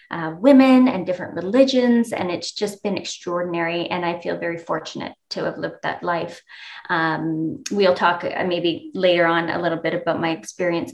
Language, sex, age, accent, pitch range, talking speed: English, female, 20-39, American, 170-200 Hz, 180 wpm